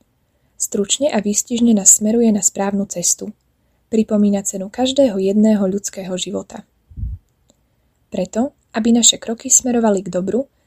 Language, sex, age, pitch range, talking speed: Slovak, female, 20-39, 195-230 Hz, 120 wpm